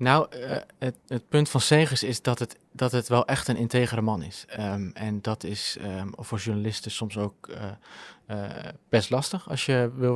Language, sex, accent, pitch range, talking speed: Dutch, male, Dutch, 110-125 Hz, 185 wpm